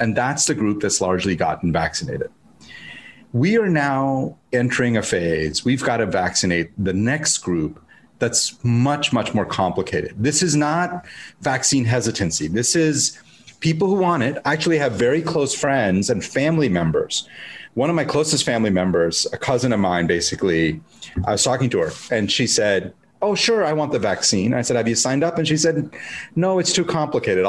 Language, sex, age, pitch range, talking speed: English, male, 30-49, 115-160 Hz, 180 wpm